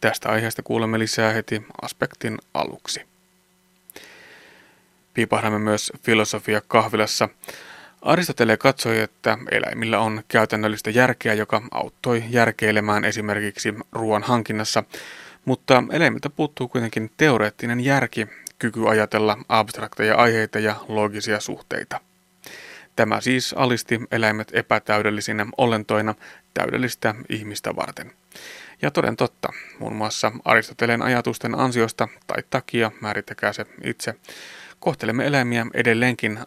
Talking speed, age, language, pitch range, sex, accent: 100 wpm, 30-49, Finnish, 105-120 Hz, male, native